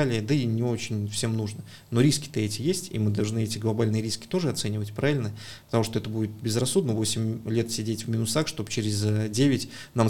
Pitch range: 110-130 Hz